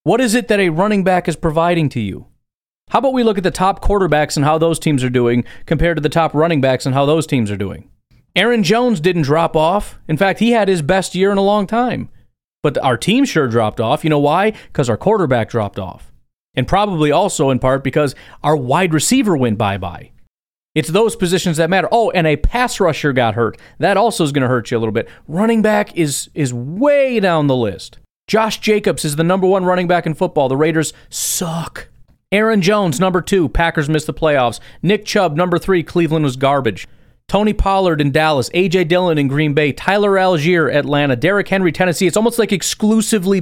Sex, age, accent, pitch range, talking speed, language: male, 30-49, American, 135-195 Hz, 215 wpm, English